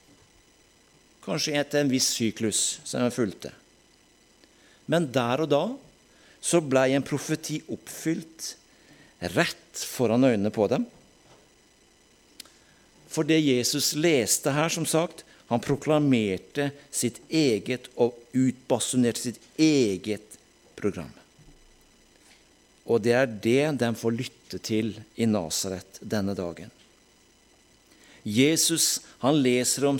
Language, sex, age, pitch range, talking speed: German, male, 50-69, 120-155 Hz, 105 wpm